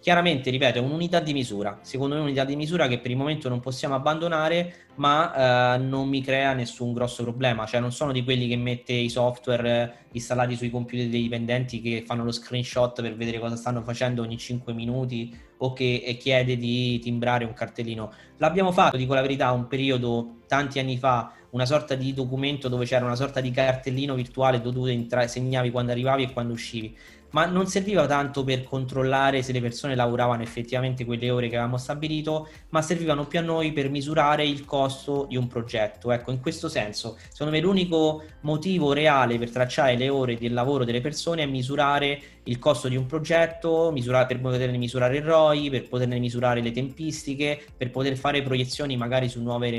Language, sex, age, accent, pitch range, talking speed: Italian, male, 20-39, native, 120-140 Hz, 190 wpm